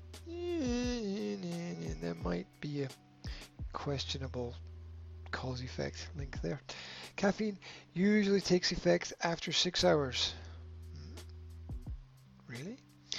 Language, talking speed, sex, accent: English, 75 wpm, male, American